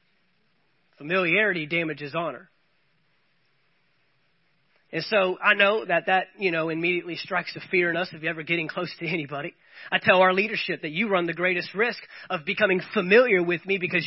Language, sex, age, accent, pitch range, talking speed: English, male, 30-49, American, 180-235 Hz, 165 wpm